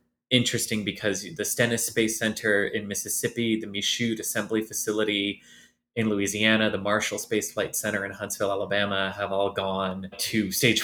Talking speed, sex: 150 wpm, male